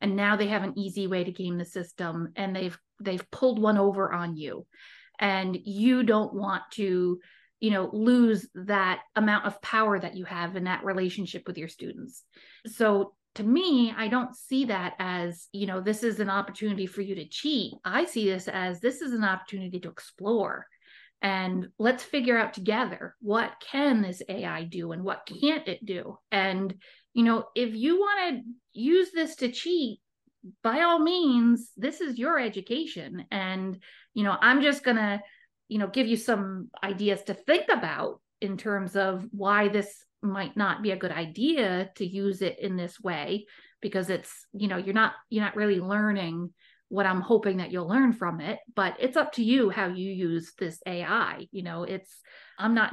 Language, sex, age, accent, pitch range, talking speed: English, female, 30-49, American, 185-230 Hz, 190 wpm